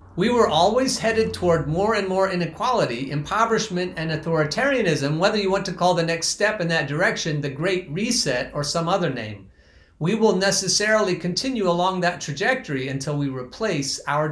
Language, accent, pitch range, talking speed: English, American, 150-205 Hz, 170 wpm